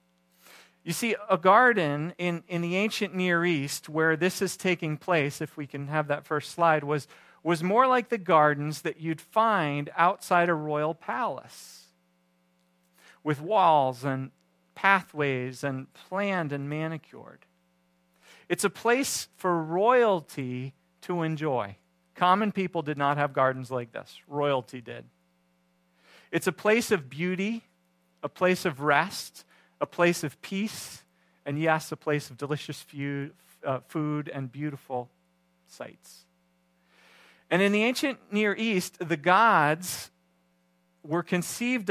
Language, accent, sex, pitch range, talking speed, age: English, American, male, 120-180 Hz, 135 wpm, 40-59